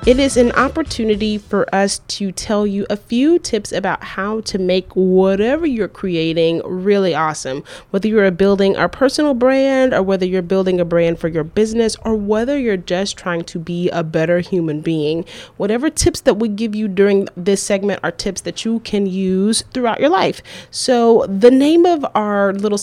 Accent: American